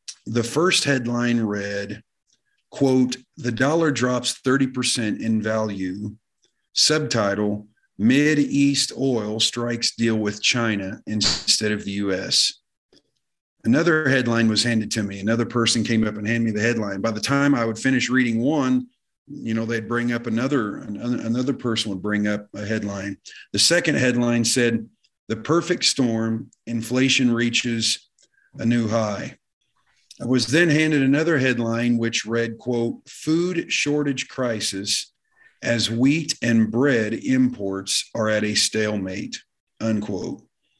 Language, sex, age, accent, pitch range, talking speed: English, male, 40-59, American, 110-130 Hz, 135 wpm